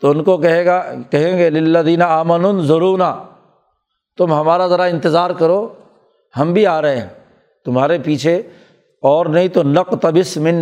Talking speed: 155 wpm